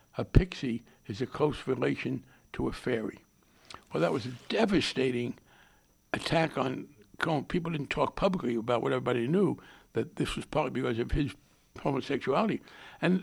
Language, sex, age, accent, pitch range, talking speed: English, male, 60-79, American, 160-200 Hz, 150 wpm